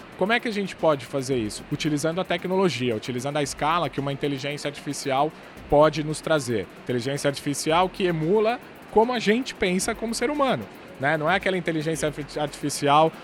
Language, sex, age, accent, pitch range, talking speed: Portuguese, male, 20-39, Brazilian, 145-185 Hz, 170 wpm